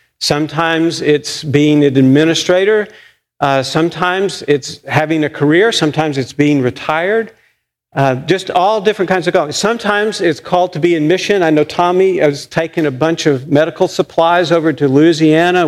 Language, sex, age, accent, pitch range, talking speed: English, male, 50-69, American, 135-175 Hz, 160 wpm